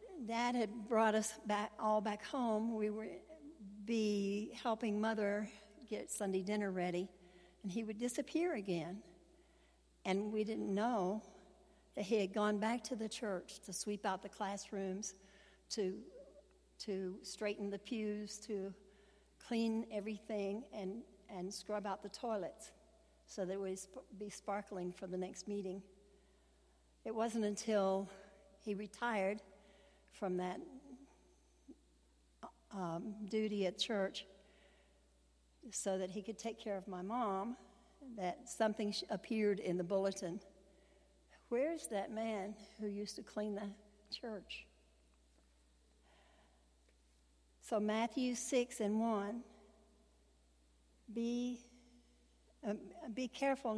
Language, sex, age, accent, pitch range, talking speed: English, female, 60-79, American, 190-220 Hz, 120 wpm